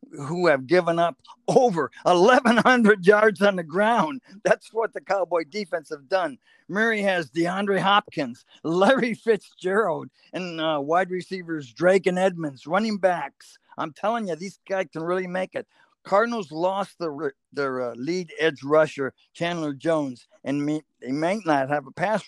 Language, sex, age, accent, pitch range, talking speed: English, male, 50-69, American, 150-205 Hz, 155 wpm